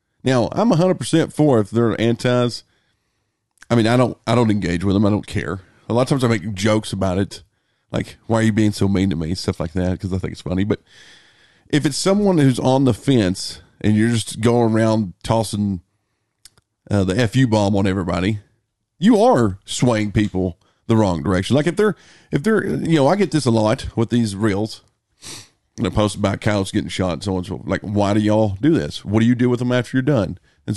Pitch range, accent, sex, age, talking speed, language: 100-125 Hz, American, male, 40-59, 230 wpm, English